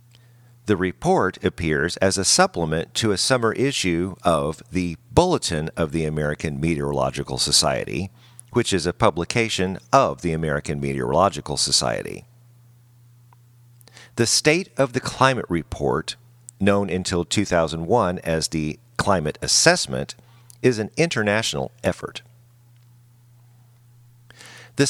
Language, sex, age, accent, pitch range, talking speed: English, male, 50-69, American, 90-120 Hz, 110 wpm